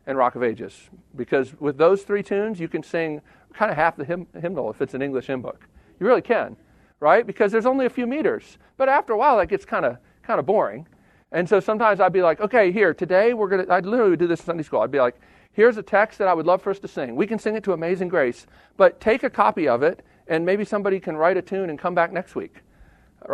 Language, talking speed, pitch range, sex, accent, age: English, 265 wpm, 160-210 Hz, male, American, 50-69